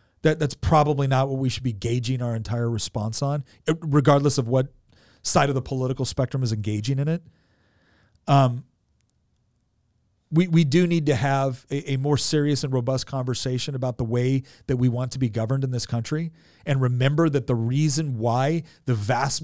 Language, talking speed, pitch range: English, 180 wpm, 115-150 Hz